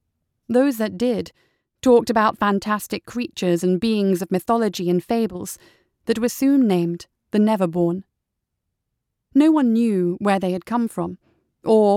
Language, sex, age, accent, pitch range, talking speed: English, female, 30-49, British, 185-235 Hz, 140 wpm